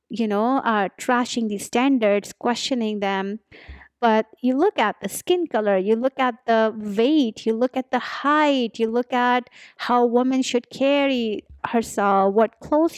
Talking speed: 165 wpm